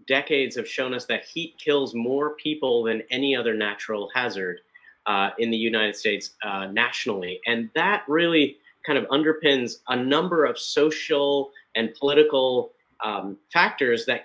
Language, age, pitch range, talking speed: English, 40-59, 130-165 Hz, 150 wpm